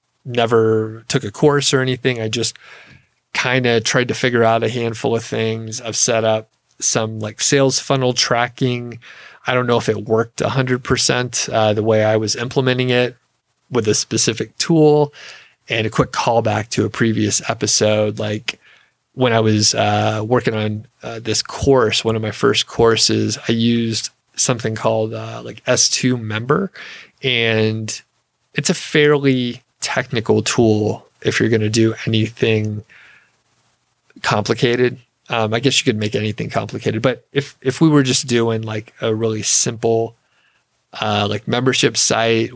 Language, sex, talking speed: English, male, 160 wpm